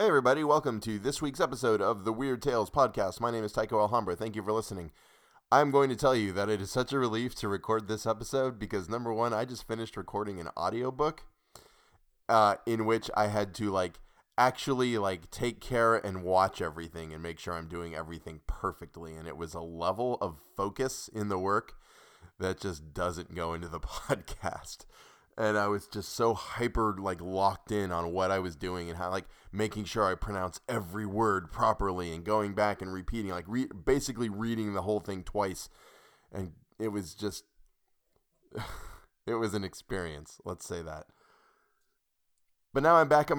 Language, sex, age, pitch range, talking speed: English, male, 20-39, 90-115 Hz, 190 wpm